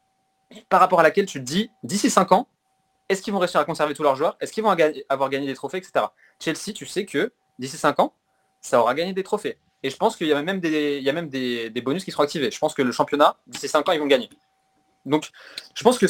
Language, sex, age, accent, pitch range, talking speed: French, male, 20-39, French, 135-180 Hz, 270 wpm